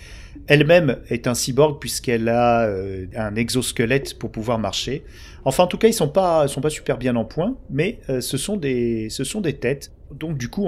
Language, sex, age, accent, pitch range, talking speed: French, male, 40-59, French, 110-145 Hz, 215 wpm